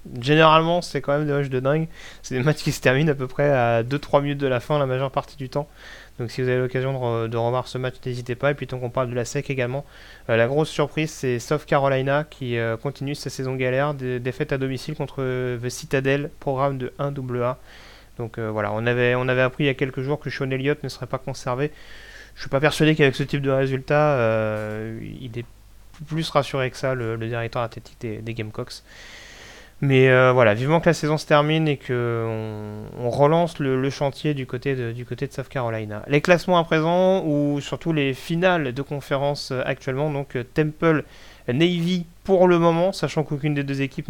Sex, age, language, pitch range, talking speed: male, 30-49, French, 125-150 Hz, 220 wpm